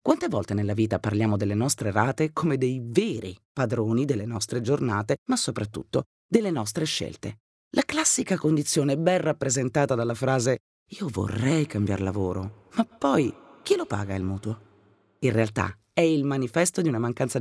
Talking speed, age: 160 wpm, 30-49